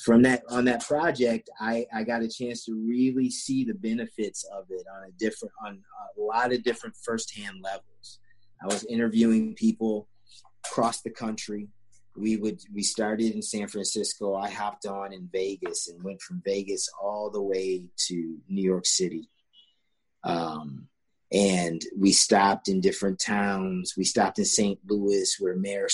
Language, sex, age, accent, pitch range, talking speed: English, male, 30-49, American, 100-125 Hz, 165 wpm